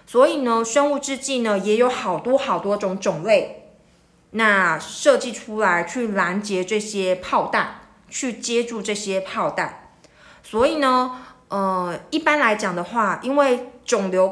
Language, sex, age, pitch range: Chinese, female, 20-39, 190-245 Hz